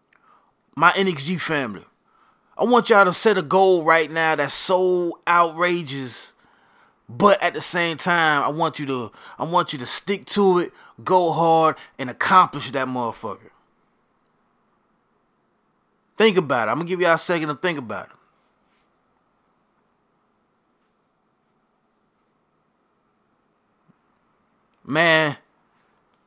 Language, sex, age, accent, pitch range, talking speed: English, male, 20-39, American, 155-185 Hz, 115 wpm